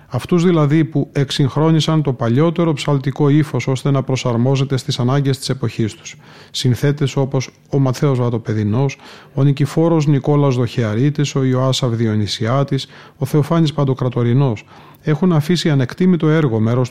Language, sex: Greek, male